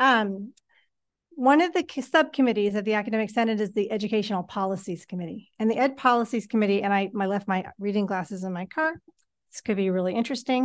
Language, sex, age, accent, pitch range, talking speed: English, female, 40-59, American, 200-250 Hz, 190 wpm